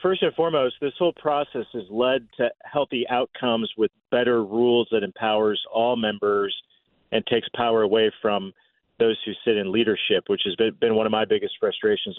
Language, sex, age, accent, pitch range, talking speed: English, male, 40-59, American, 110-145 Hz, 180 wpm